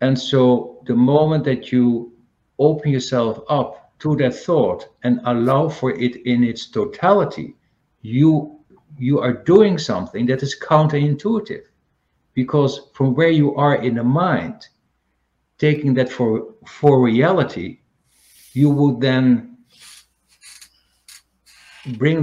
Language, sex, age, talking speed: English, male, 60-79, 120 wpm